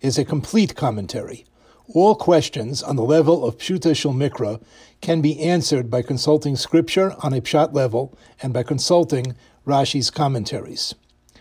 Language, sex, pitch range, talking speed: English, male, 130-160 Hz, 145 wpm